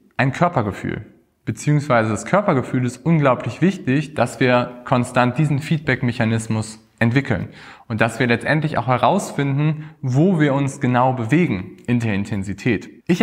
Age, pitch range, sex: 20-39, 120-155 Hz, male